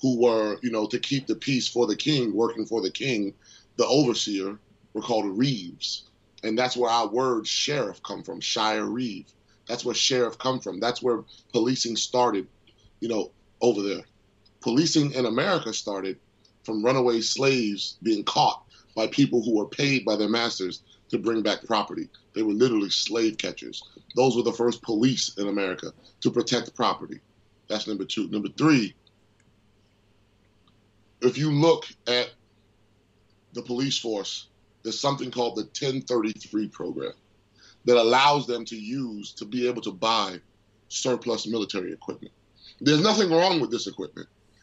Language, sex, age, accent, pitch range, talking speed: English, male, 30-49, American, 105-135 Hz, 155 wpm